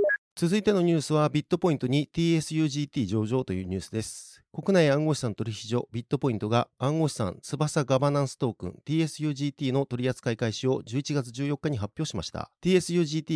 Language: Japanese